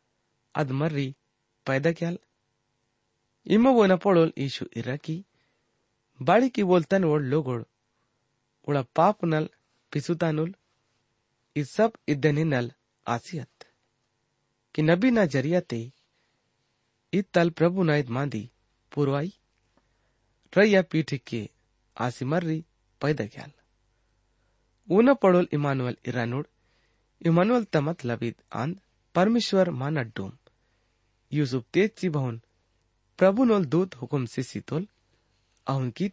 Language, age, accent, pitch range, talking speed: English, 30-49, Indian, 120-165 Hz, 55 wpm